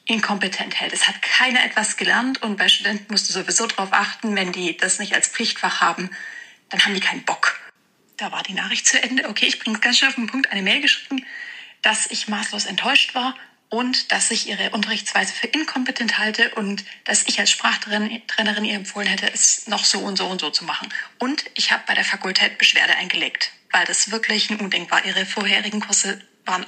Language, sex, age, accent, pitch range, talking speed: German, female, 30-49, German, 200-235 Hz, 210 wpm